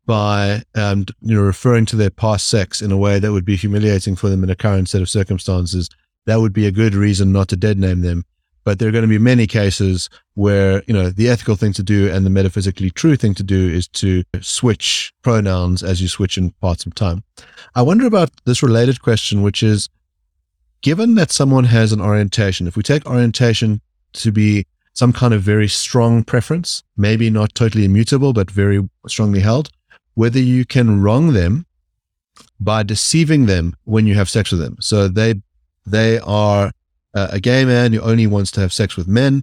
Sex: male